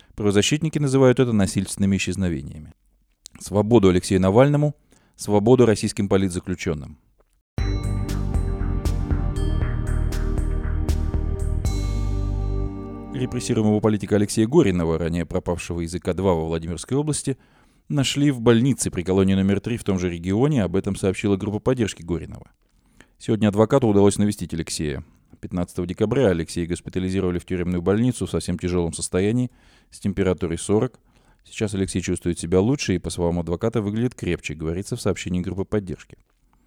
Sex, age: male, 20-39